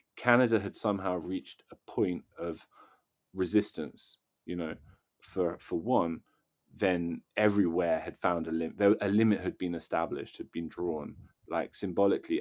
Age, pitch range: 30-49, 90-110 Hz